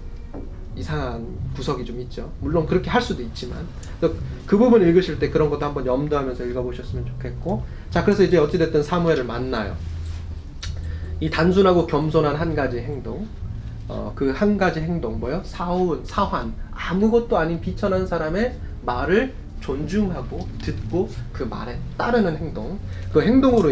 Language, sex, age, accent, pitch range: Korean, male, 20-39, native, 115-185 Hz